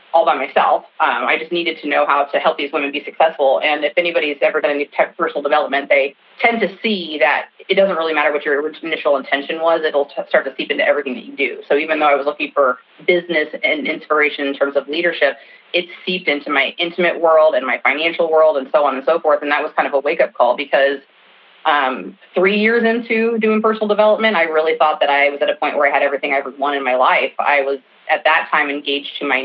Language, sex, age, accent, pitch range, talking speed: English, female, 30-49, American, 145-180 Hz, 245 wpm